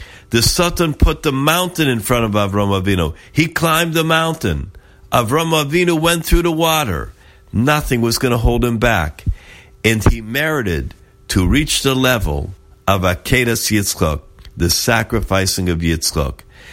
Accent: American